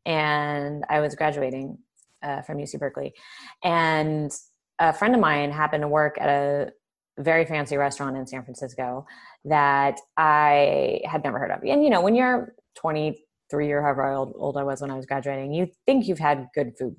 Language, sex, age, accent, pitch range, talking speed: English, female, 20-39, American, 140-170 Hz, 185 wpm